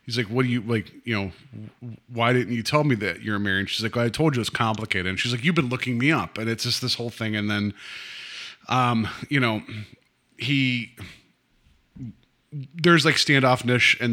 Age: 30-49